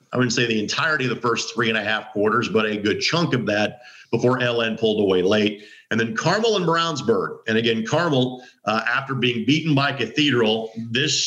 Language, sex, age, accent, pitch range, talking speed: English, male, 50-69, American, 115-145 Hz, 210 wpm